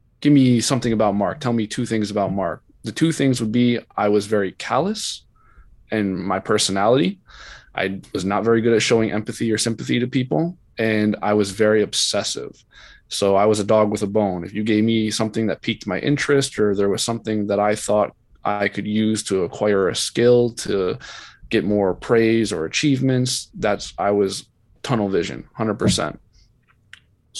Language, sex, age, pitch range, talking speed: English, male, 20-39, 105-120 Hz, 180 wpm